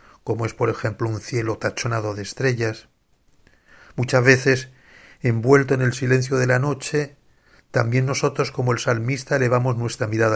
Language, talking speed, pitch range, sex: Spanish, 150 wpm, 115-140 Hz, male